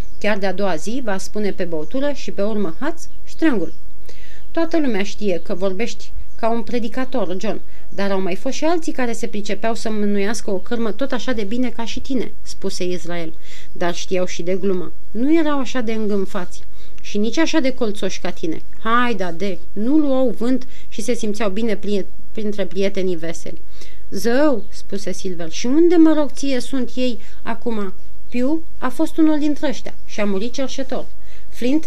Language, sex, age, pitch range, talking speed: Romanian, female, 30-49, 190-255 Hz, 185 wpm